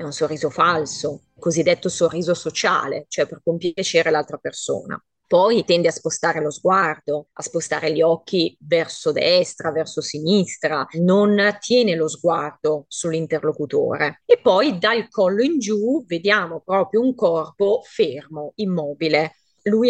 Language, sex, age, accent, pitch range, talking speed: Italian, female, 30-49, native, 165-215 Hz, 135 wpm